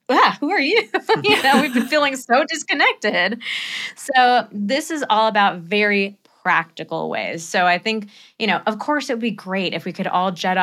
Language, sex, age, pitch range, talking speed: English, female, 20-39, 170-220 Hz, 190 wpm